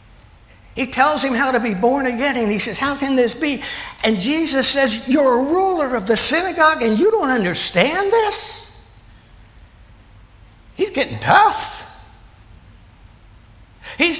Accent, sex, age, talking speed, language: American, male, 60-79, 140 wpm, English